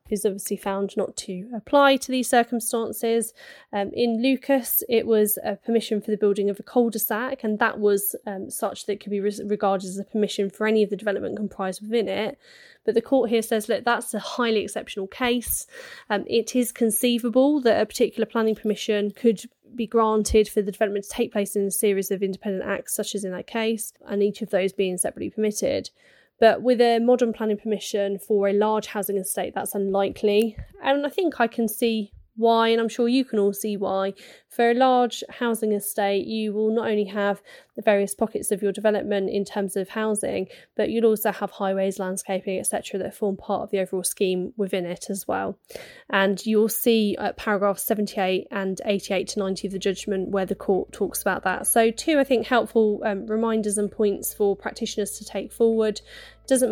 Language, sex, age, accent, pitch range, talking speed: English, female, 10-29, British, 200-230 Hz, 200 wpm